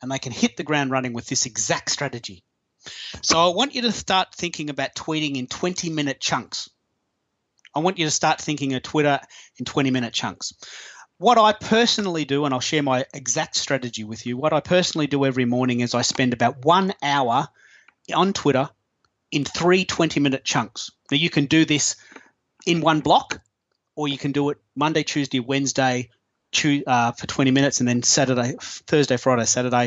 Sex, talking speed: male, 185 wpm